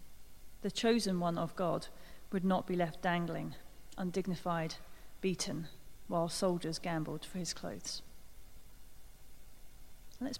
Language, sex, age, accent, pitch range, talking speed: English, female, 40-59, British, 155-220 Hz, 110 wpm